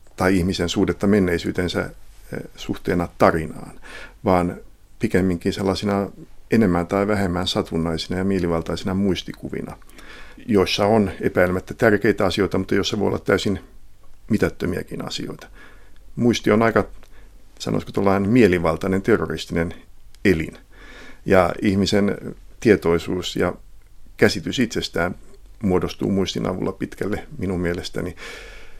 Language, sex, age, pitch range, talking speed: Finnish, male, 50-69, 85-100 Hz, 100 wpm